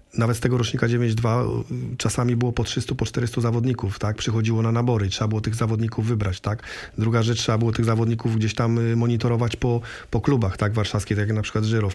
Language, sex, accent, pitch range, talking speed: Polish, male, native, 110-125 Hz, 210 wpm